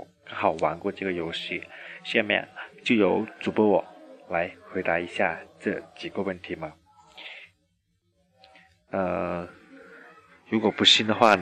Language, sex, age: Chinese, male, 20-39